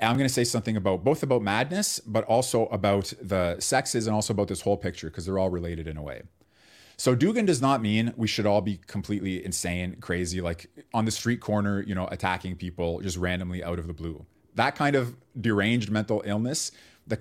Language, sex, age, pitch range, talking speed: English, male, 30-49, 95-120 Hz, 215 wpm